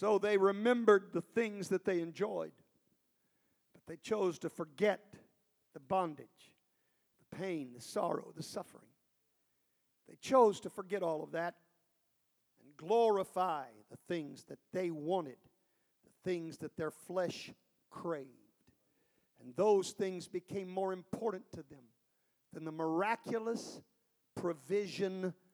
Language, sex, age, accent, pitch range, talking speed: English, male, 50-69, American, 170-230 Hz, 125 wpm